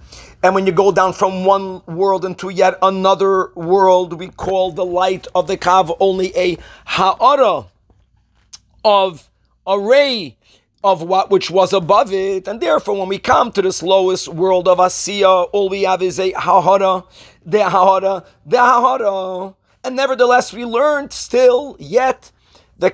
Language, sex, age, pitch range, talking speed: English, male, 40-59, 185-230 Hz, 155 wpm